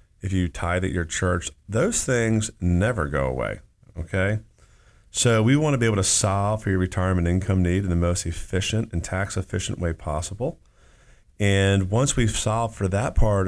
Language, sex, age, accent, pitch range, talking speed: English, male, 30-49, American, 85-105 Hz, 180 wpm